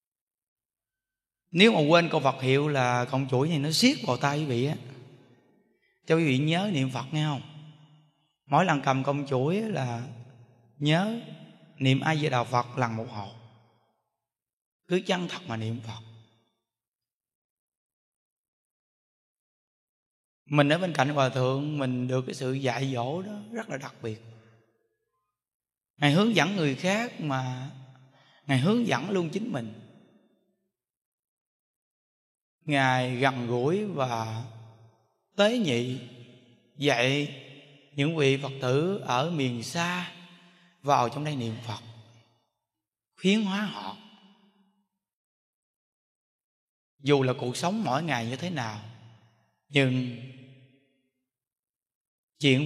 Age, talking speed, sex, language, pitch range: 20-39, 125 wpm, male, Vietnamese, 120-160 Hz